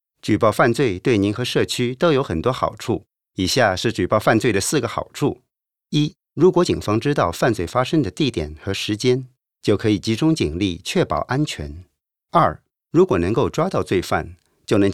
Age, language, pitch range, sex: 50-69, Chinese, 95-145 Hz, male